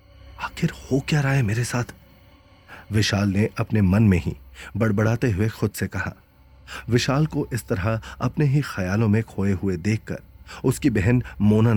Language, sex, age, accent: Hindi, male, 30-49, native